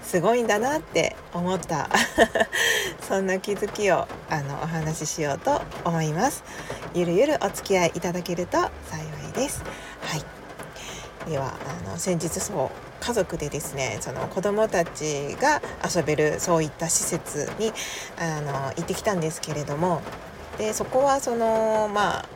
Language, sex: Japanese, female